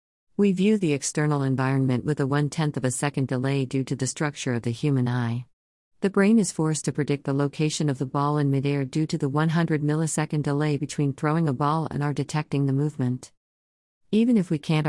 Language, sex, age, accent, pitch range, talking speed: English, female, 50-69, American, 130-155 Hz, 210 wpm